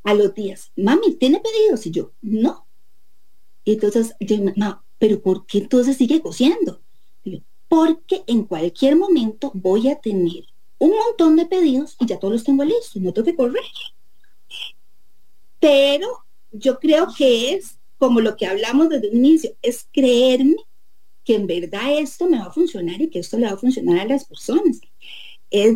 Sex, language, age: female, English, 40-59